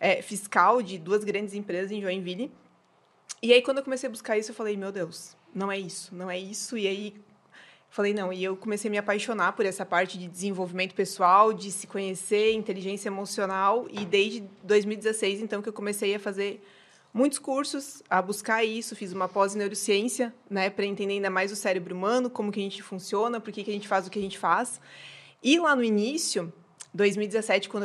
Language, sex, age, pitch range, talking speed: Portuguese, female, 20-39, 195-235 Hz, 200 wpm